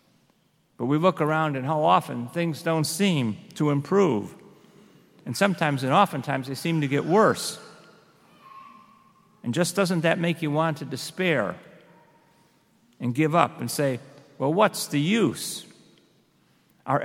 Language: English